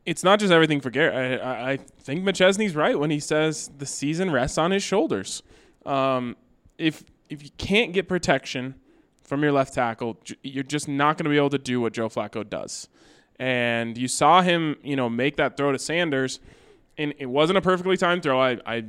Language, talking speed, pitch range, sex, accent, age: English, 205 wpm, 125-155 Hz, male, American, 20-39